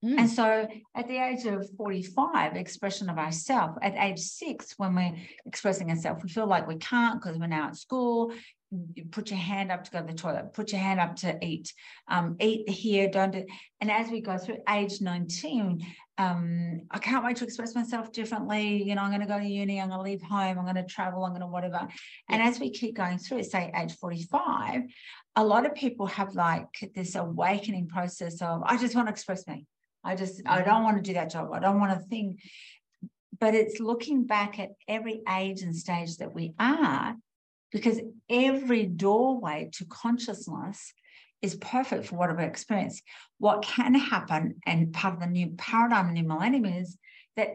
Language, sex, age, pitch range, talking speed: English, female, 40-59, 180-225 Hz, 200 wpm